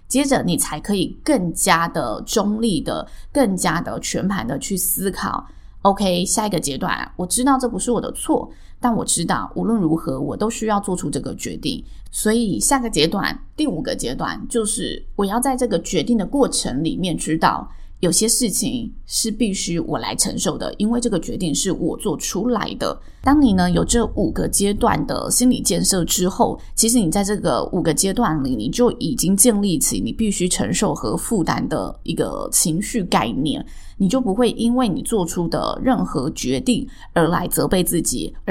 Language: Chinese